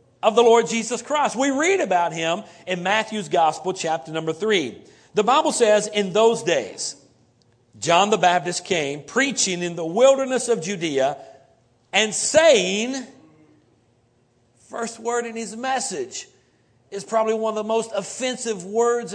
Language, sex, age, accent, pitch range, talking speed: English, male, 50-69, American, 175-235 Hz, 145 wpm